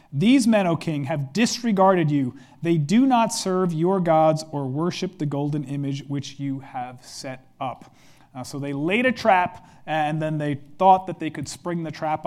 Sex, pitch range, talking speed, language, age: male, 145-185 Hz, 190 wpm, English, 40-59